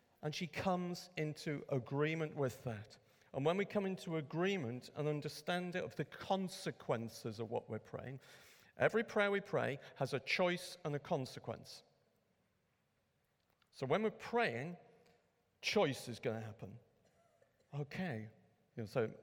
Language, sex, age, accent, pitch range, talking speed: English, male, 50-69, British, 120-170 Hz, 135 wpm